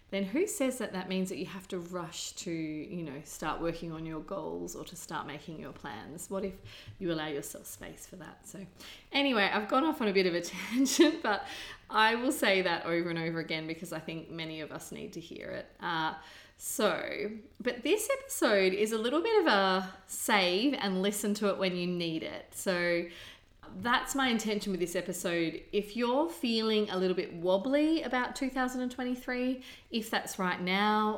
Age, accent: 30-49, Australian